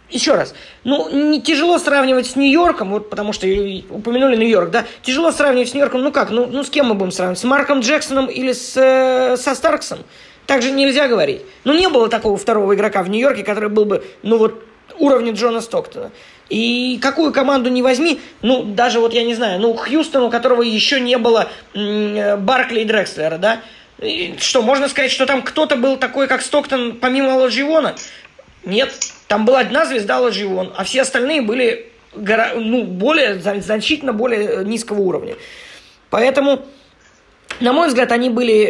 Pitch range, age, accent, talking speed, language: 210-280 Hz, 20-39, native, 175 wpm, Russian